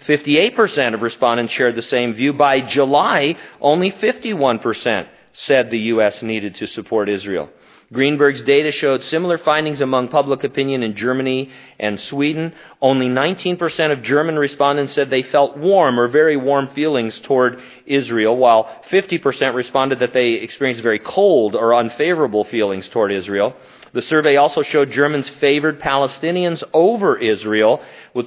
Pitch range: 115-145 Hz